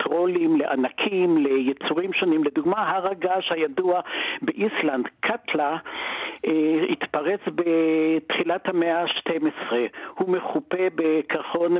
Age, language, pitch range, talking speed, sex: 60-79, Hebrew, 160-210 Hz, 90 wpm, male